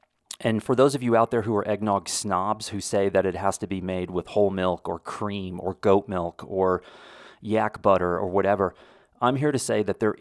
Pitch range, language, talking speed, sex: 95-110 Hz, English, 225 wpm, male